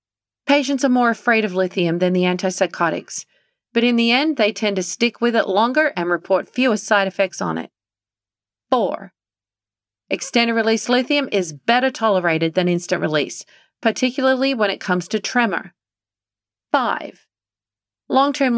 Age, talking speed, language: 40-59, 140 wpm, English